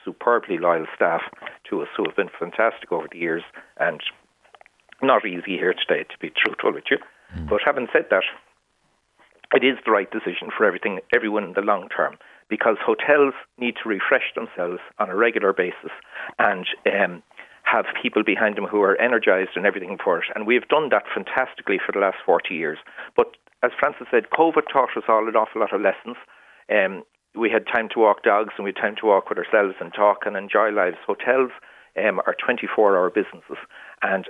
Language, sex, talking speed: English, male, 190 wpm